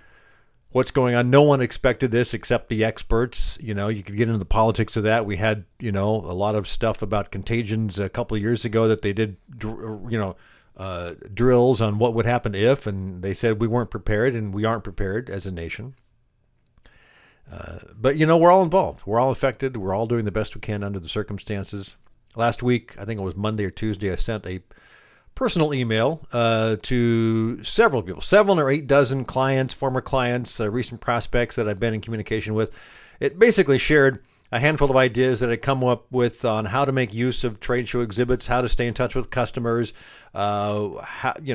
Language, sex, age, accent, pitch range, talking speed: English, male, 50-69, American, 105-125 Hz, 205 wpm